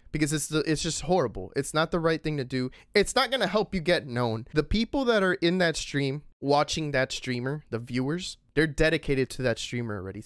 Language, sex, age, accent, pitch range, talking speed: English, male, 20-39, American, 125-180 Hz, 220 wpm